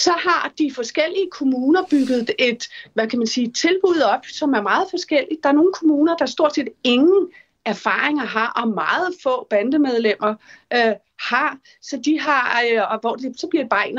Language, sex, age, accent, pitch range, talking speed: Danish, female, 40-59, native, 235-305 Hz, 190 wpm